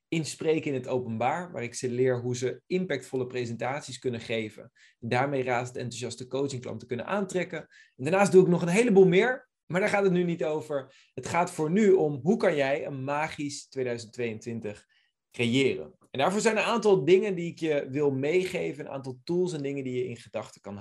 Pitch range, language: 125-175 Hz, Dutch